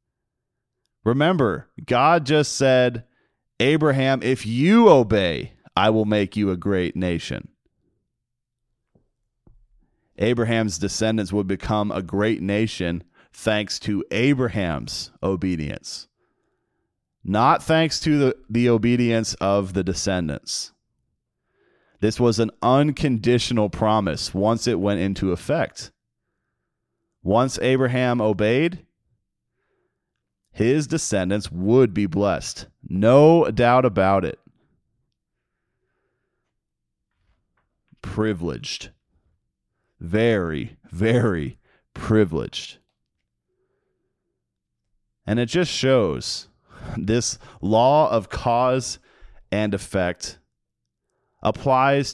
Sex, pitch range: male, 100-125 Hz